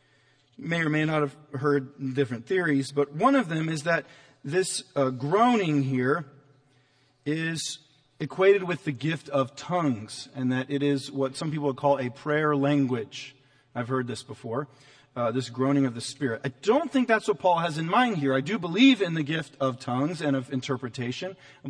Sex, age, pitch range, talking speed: male, 40-59, 135-170 Hz, 190 wpm